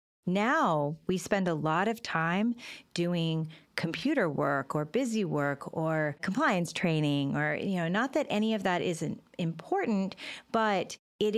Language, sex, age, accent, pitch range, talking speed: English, female, 30-49, American, 140-175 Hz, 150 wpm